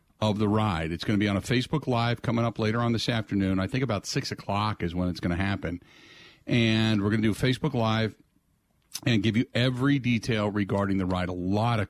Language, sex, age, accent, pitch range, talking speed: English, male, 50-69, American, 100-125 Hz, 235 wpm